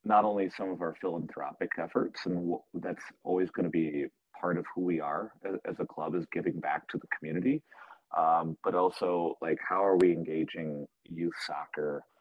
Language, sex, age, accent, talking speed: English, male, 30-49, American, 180 wpm